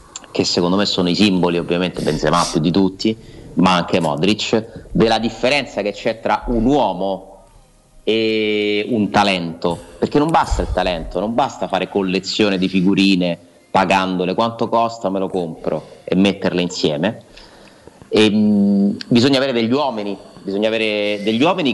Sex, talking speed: male, 145 wpm